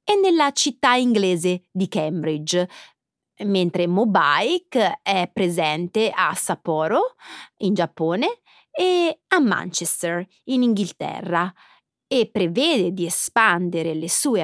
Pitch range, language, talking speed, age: 175-275 Hz, Italian, 100 wpm, 30-49